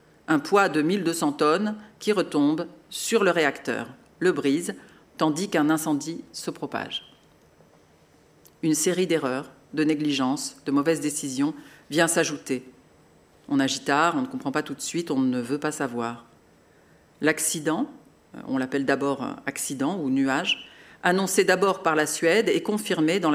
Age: 50-69